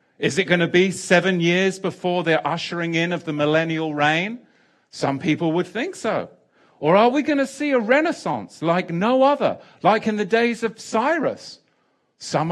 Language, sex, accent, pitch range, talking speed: English, male, British, 145-215 Hz, 180 wpm